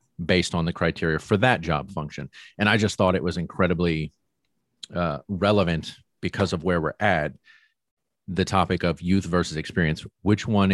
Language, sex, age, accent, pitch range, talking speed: English, male, 40-59, American, 85-100 Hz, 170 wpm